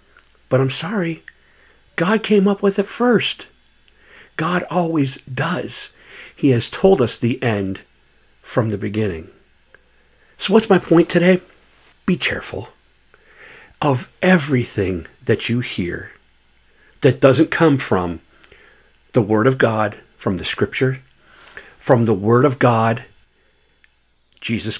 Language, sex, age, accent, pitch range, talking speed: English, male, 50-69, American, 110-170 Hz, 120 wpm